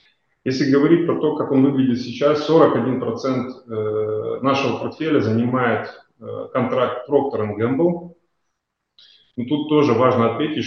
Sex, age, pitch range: male, 20-39, 115-135 Hz